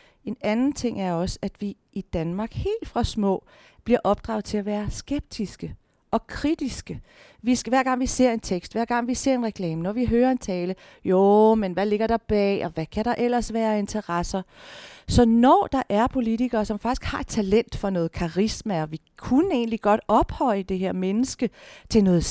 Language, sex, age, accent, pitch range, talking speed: Danish, female, 40-59, native, 195-245 Hz, 195 wpm